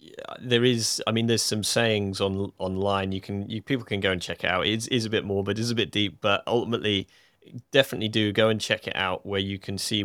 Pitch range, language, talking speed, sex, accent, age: 95-110 Hz, English, 265 wpm, male, British, 30-49